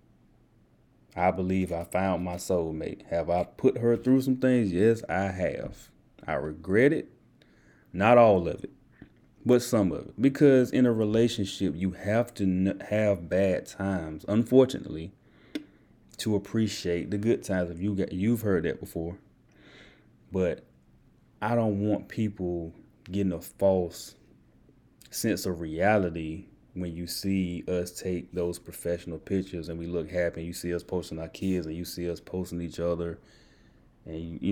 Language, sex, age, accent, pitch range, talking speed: English, male, 30-49, American, 85-105 Hz, 160 wpm